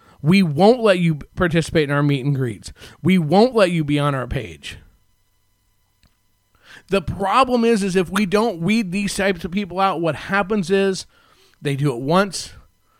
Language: English